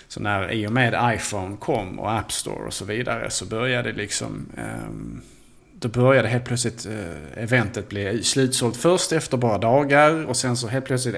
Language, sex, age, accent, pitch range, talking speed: Swedish, male, 30-49, Norwegian, 105-130 Hz, 185 wpm